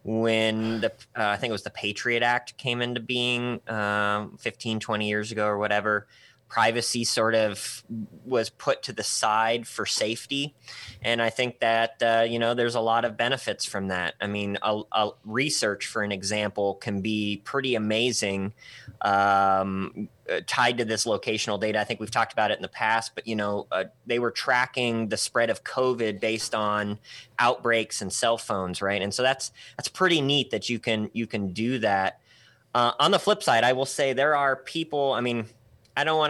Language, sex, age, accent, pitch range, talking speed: English, male, 20-39, American, 105-125 Hz, 195 wpm